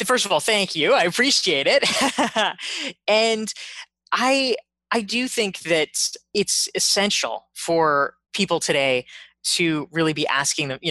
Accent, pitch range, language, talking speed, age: American, 155-225 Hz, English, 140 wpm, 20-39